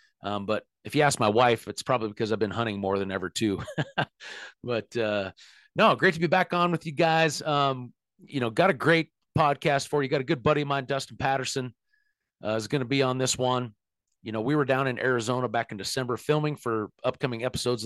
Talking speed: 225 wpm